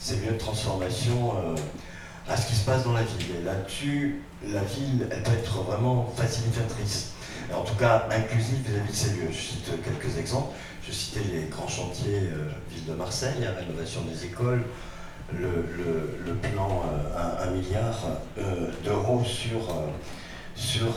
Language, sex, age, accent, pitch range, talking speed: French, male, 40-59, French, 95-120 Hz, 170 wpm